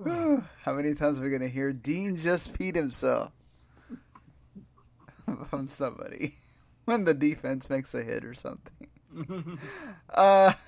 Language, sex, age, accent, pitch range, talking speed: English, male, 20-39, American, 115-145 Hz, 130 wpm